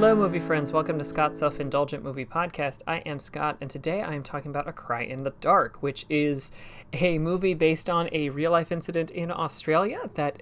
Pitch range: 135-170 Hz